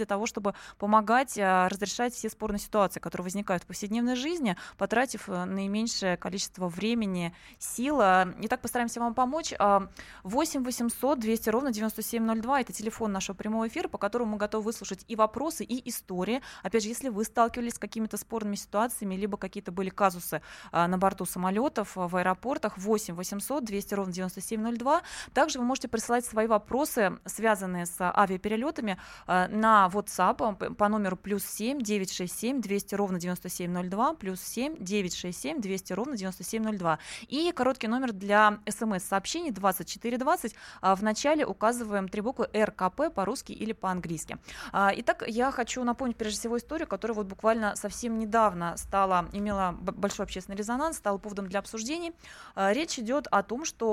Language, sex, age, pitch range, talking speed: Russian, female, 20-39, 190-235 Hz, 145 wpm